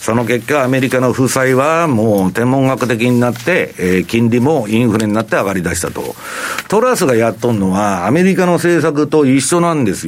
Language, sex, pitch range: Japanese, male, 115-165 Hz